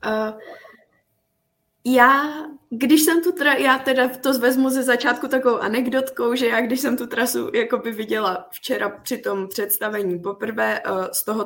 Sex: female